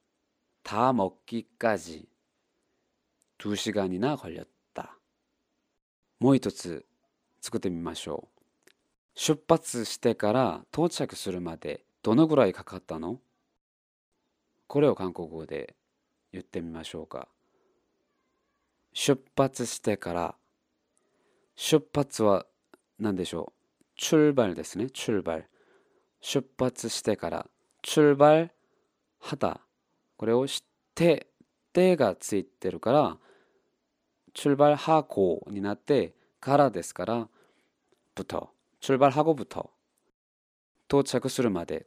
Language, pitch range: Japanese, 90-140 Hz